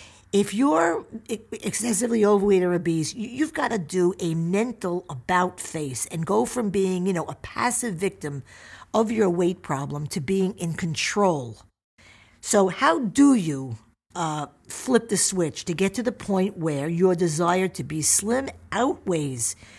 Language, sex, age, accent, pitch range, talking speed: English, female, 50-69, American, 155-220 Hz, 155 wpm